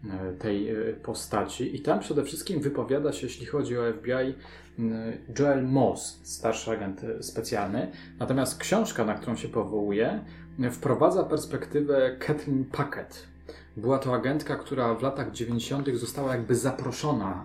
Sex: male